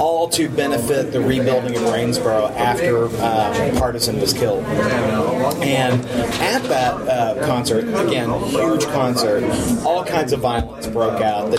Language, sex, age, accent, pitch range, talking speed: English, male, 30-49, American, 115-130 Hz, 140 wpm